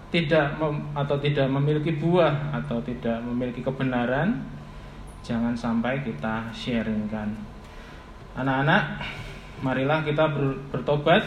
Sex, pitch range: male, 120-150 Hz